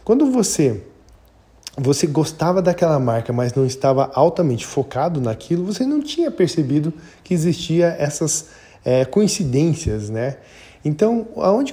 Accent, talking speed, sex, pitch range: Brazilian, 120 wpm, male, 125-165 Hz